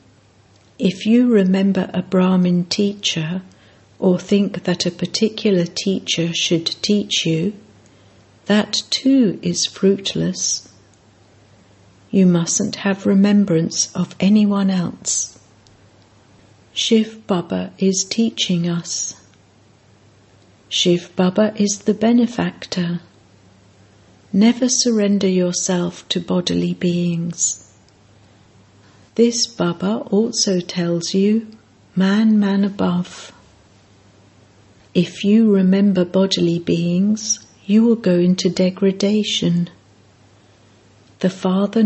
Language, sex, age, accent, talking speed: English, female, 60-79, British, 90 wpm